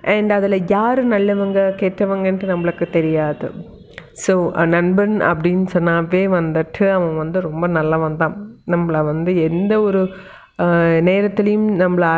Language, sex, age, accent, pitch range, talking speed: Tamil, female, 30-49, native, 175-210 Hz, 115 wpm